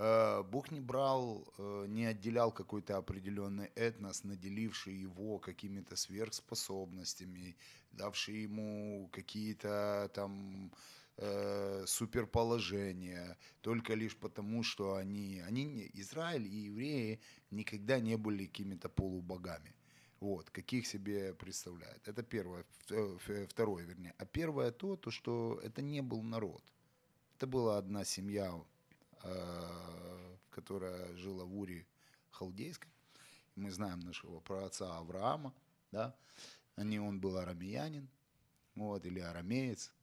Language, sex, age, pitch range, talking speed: Ukrainian, male, 30-49, 95-115 Hz, 105 wpm